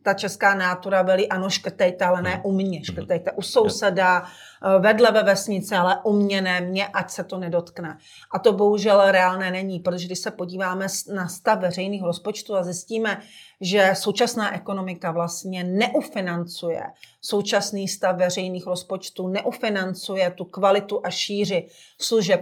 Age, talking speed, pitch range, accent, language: 40-59, 145 wpm, 185-210 Hz, native, Czech